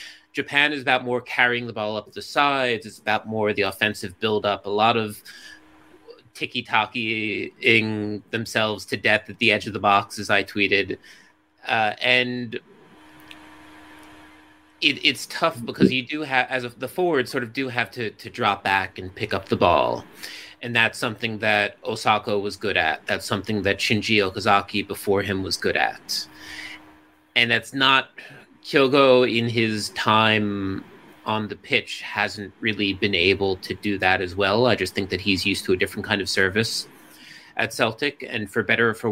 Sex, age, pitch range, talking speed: male, 30-49, 100-120 Hz, 175 wpm